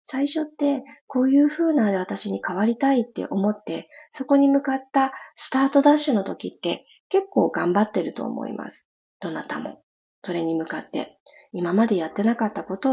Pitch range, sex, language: 185-285 Hz, female, Japanese